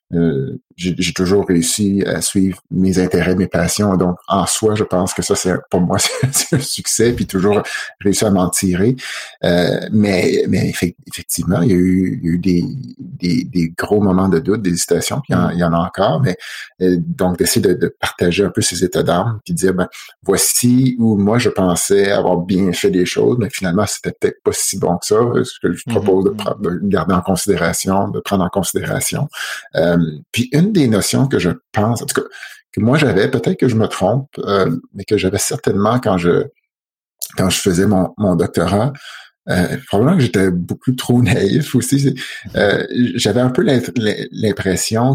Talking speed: 205 wpm